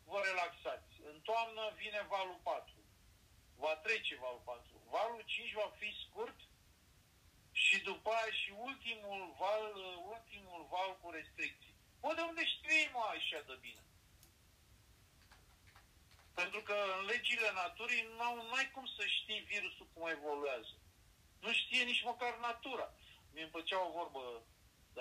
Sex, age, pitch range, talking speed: male, 50-69, 130-215 Hz, 135 wpm